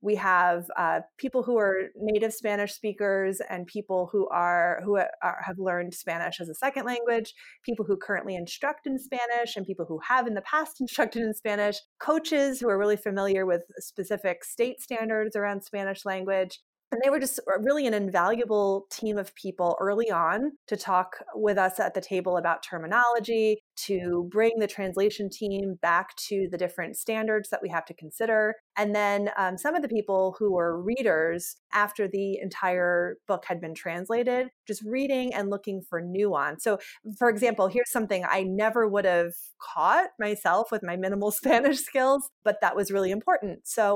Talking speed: 175 wpm